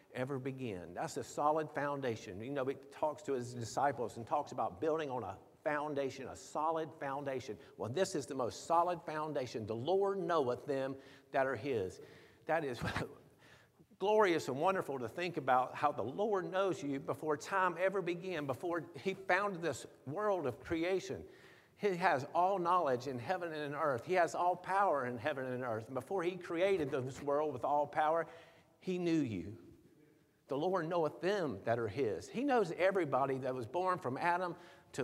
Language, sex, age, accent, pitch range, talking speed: English, male, 50-69, American, 140-185 Hz, 180 wpm